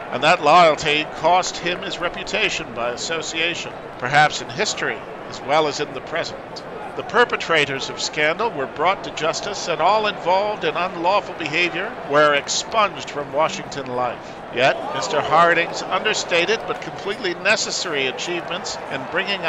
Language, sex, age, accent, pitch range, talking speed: English, male, 50-69, American, 140-175 Hz, 145 wpm